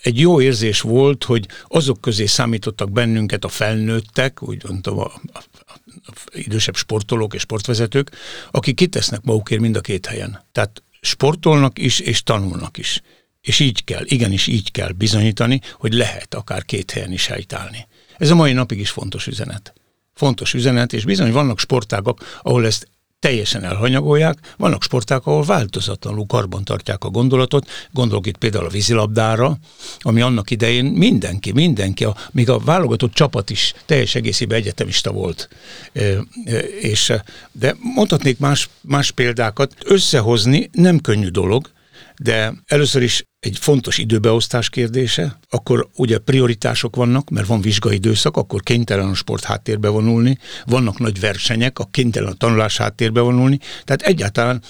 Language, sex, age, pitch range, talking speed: Hungarian, male, 60-79, 110-130 Hz, 150 wpm